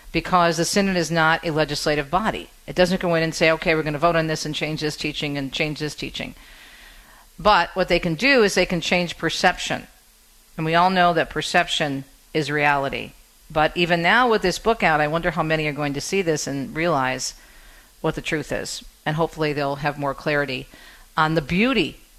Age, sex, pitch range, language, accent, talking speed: 50-69, female, 155-210 Hz, English, American, 210 wpm